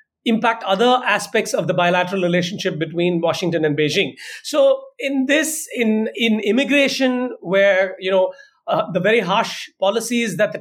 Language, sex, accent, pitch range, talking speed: English, male, Indian, 190-245 Hz, 155 wpm